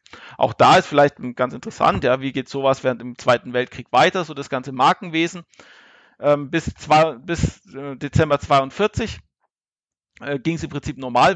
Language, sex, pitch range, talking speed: German, male, 130-160 Hz, 165 wpm